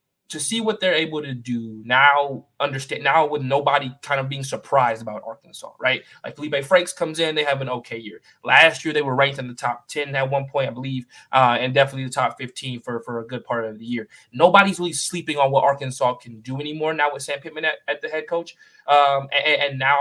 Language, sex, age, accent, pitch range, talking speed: English, male, 20-39, American, 130-150 Hz, 235 wpm